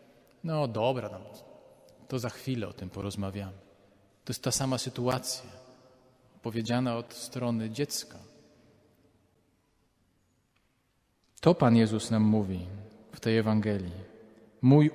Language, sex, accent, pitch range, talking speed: Polish, male, native, 115-150 Hz, 105 wpm